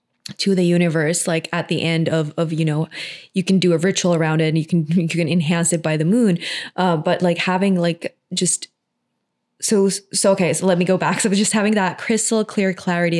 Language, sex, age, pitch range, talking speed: English, female, 20-39, 155-180 Hz, 225 wpm